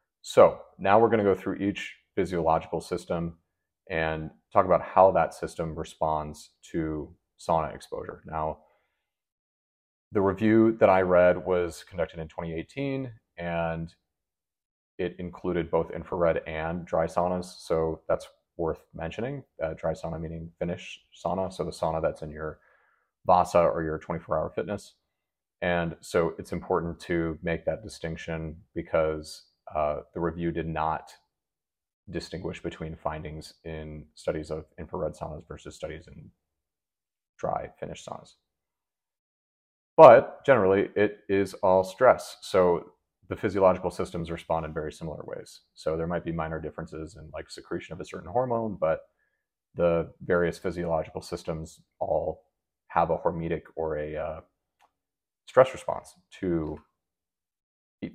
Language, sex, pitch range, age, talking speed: English, male, 80-90 Hz, 30-49, 135 wpm